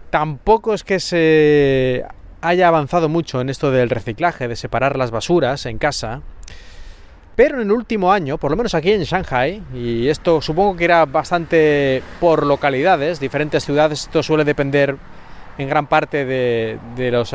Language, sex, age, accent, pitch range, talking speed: Spanish, male, 30-49, Spanish, 135-170 Hz, 165 wpm